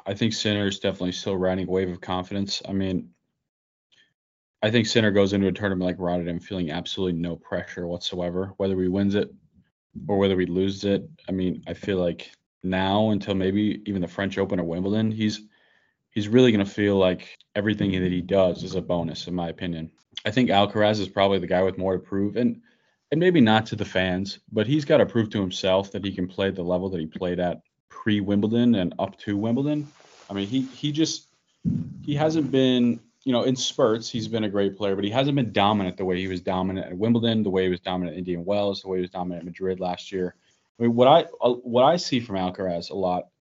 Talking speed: 230 wpm